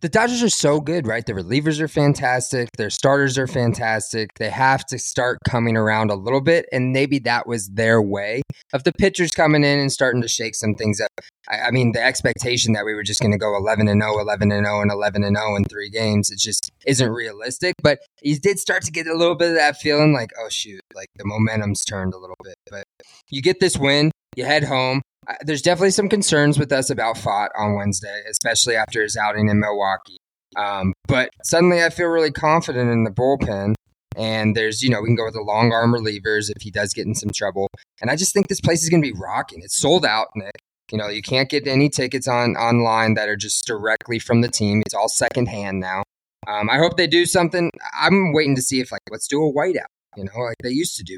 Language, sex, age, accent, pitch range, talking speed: English, male, 20-39, American, 105-145 Hz, 240 wpm